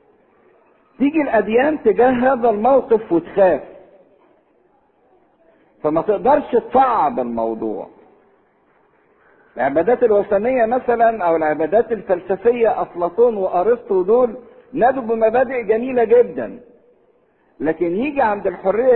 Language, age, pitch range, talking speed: English, 50-69, 165-255 Hz, 85 wpm